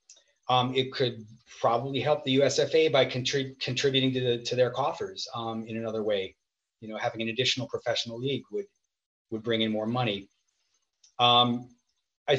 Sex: male